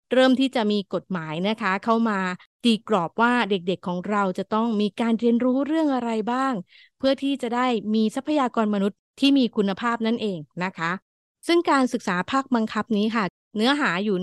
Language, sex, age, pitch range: Thai, female, 20-39, 195-240 Hz